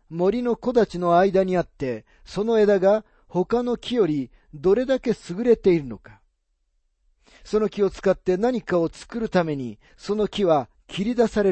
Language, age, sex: Japanese, 40-59, male